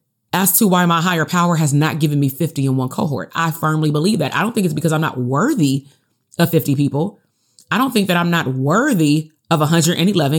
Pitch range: 145-170 Hz